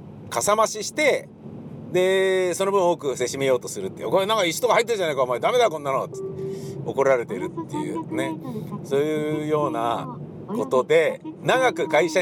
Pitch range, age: 145-195 Hz, 50-69